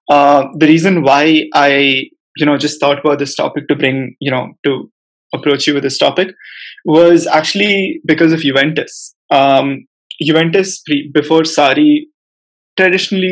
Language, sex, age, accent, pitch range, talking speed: English, male, 20-39, Indian, 140-165 Hz, 150 wpm